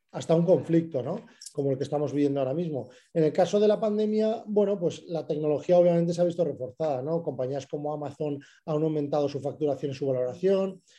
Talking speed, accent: 200 wpm, Spanish